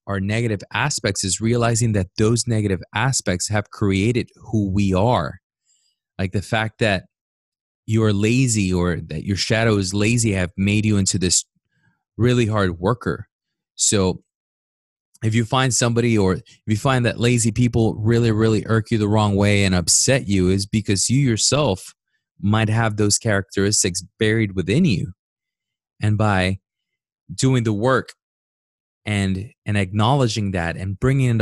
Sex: male